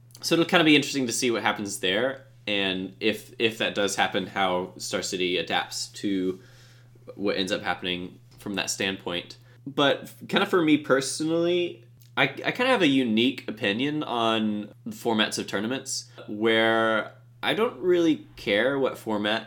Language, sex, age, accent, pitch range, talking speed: English, male, 20-39, American, 100-125 Hz, 170 wpm